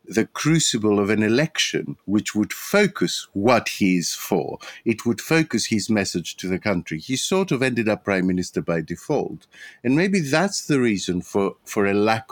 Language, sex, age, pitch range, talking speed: English, male, 50-69, 90-120 Hz, 185 wpm